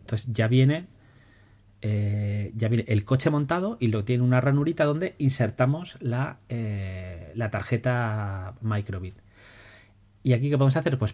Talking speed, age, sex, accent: 130 wpm, 30-49, male, Spanish